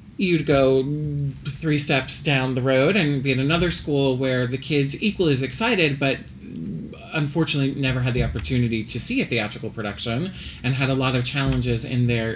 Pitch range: 110-135 Hz